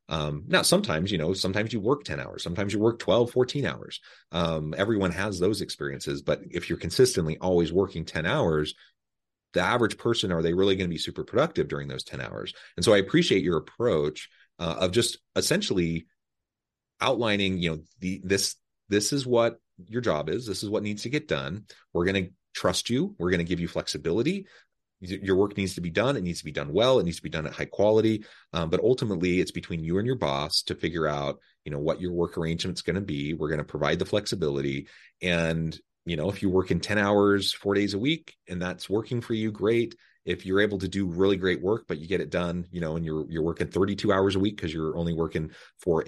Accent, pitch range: American, 85-105 Hz